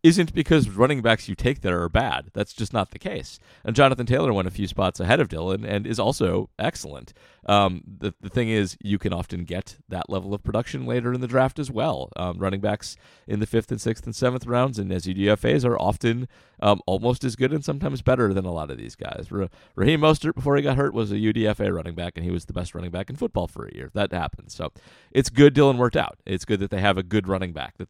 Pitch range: 90-120 Hz